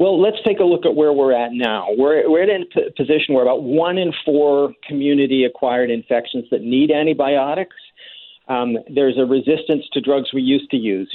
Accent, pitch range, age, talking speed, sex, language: American, 115-150 Hz, 50-69, 195 wpm, male, English